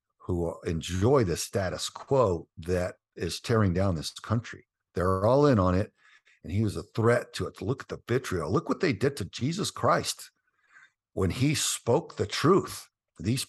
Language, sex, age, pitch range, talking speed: English, male, 60-79, 95-115 Hz, 180 wpm